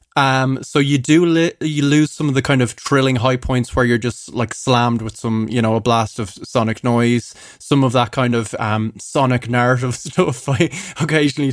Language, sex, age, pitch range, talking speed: English, male, 20-39, 120-145 Hz, 205 wpm